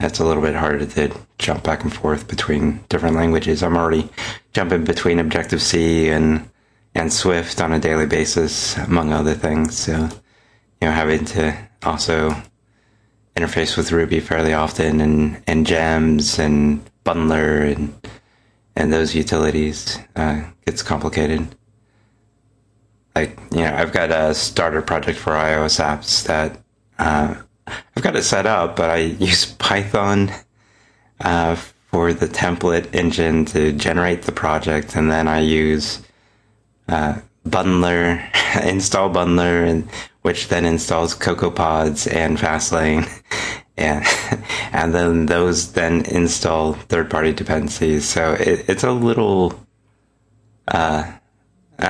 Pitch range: 80-100 Hz